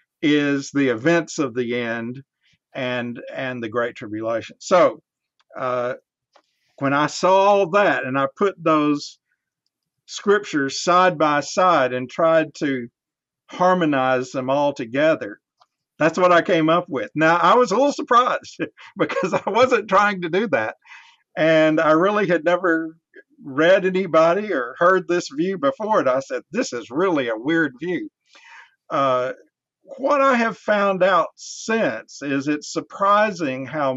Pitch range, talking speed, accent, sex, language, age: 130-180 Hz, 150 wpm, American, male, English, 50-69